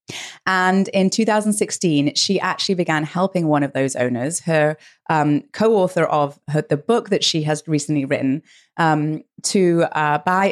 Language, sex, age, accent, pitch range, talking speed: English, female, 30-49, British, 145-185 Hz, 150 wpm